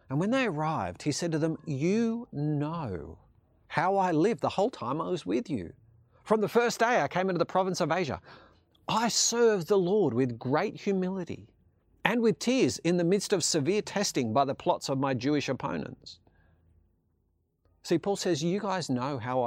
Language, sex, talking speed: English, male, 190 wpm